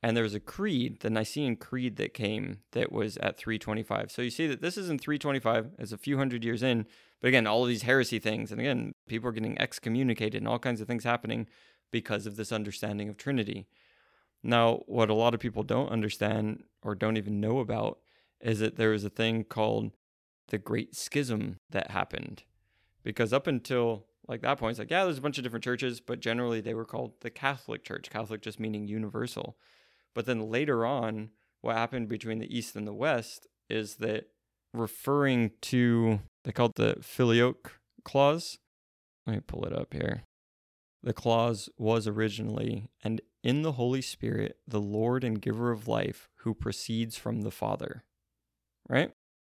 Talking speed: 185 wpm